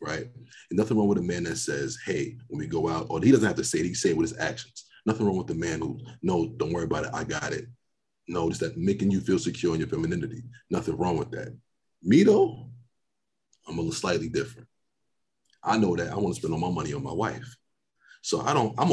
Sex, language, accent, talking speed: male, English, American, 245 wpm